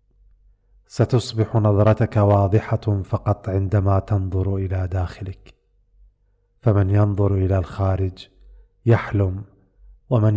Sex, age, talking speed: male, 40-59, 80 wpm